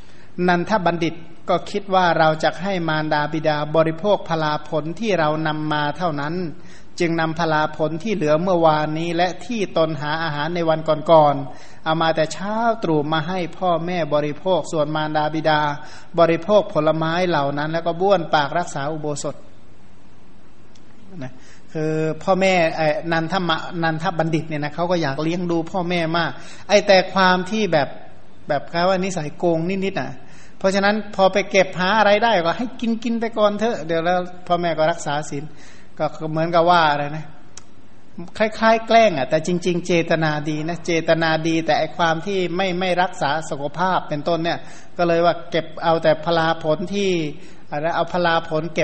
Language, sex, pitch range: Thai, male, 155-180 Hz